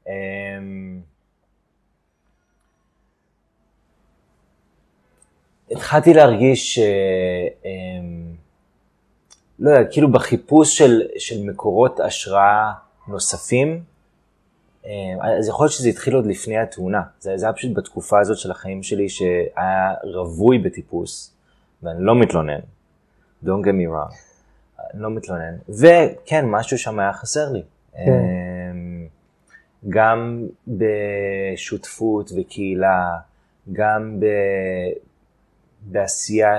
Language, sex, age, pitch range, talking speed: Hebrew, male, 20-39, 90-110 Hz, 80 wpm